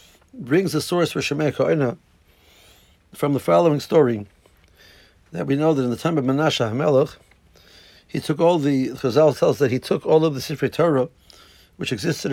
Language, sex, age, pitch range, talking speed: English, male, 60-79, 100-150 Hz, 175 wpm